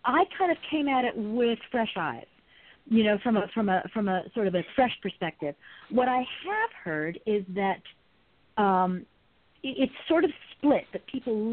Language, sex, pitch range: English, female, 190-265 Hz